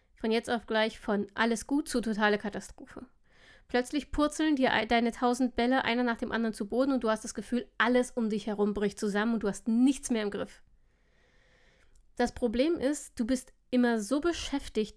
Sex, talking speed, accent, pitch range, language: female, 195 wpm, German, 215-260 Hz, German